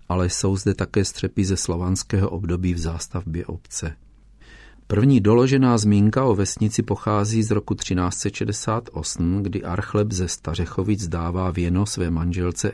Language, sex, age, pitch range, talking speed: Czech, male, 40-59, 90-110 Hz, 130 wpm